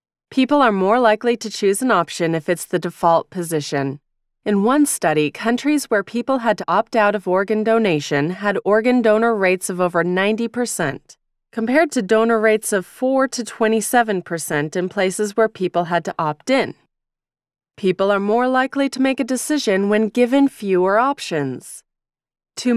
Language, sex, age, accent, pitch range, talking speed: English, female, 30-49, American, 185-245 Hz, 165 wpm